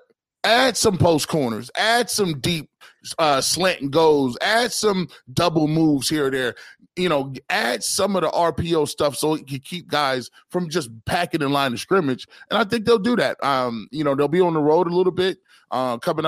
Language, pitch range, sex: English, 130-170 Hz, male